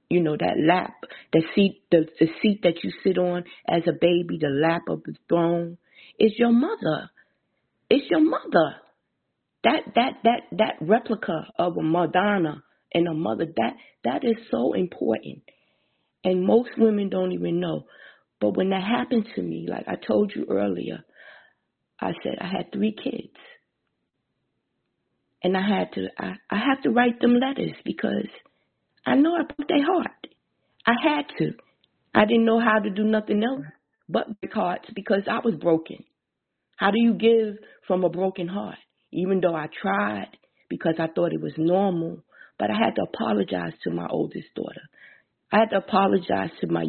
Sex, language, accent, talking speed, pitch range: female, English, American, 175 wpm, 170-230 Hz